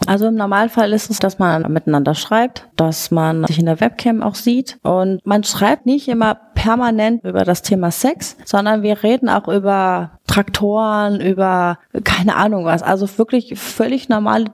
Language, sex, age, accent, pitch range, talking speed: German, female, 30-49, German, 195-240 Hz, 170 wpm